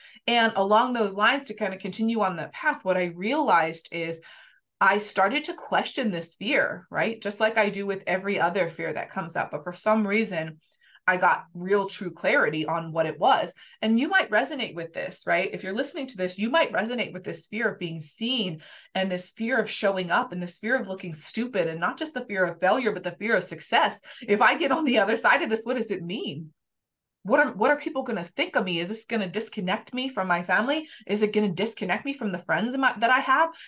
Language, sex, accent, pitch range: English, female, American, 180-250 Hz